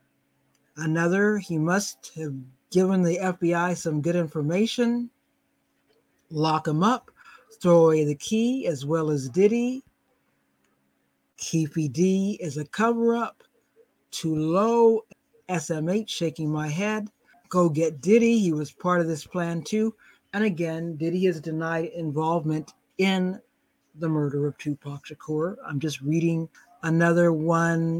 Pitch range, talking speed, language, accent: 160-185 Hz, 125 wpm, English, American